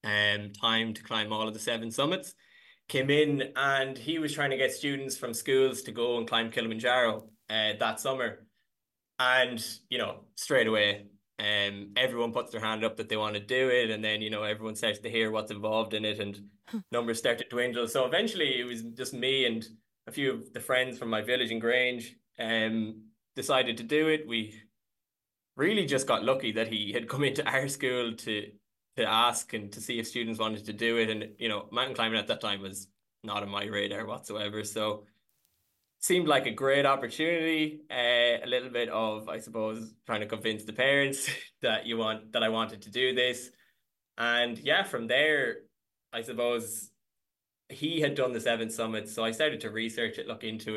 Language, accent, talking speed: English, Irish, 200 wpm